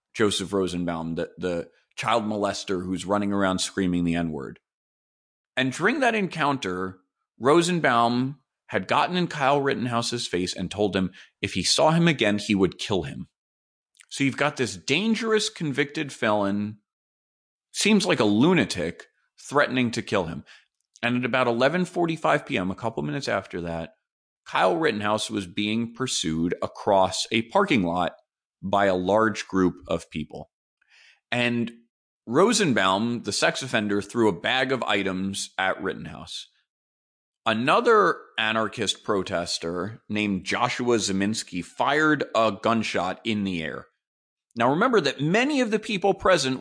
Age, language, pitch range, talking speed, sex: 30-49, English, 95-140 Hz, 140 wpm, male